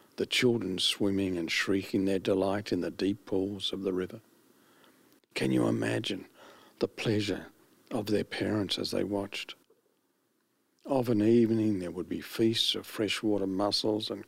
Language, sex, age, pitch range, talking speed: English, male, 60-79, 95-105 Hz, 150 wpm